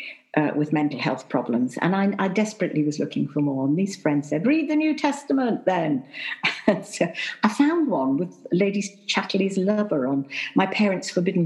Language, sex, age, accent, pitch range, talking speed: English, female, 50-69, British, 150-225 Hz, 180 wpm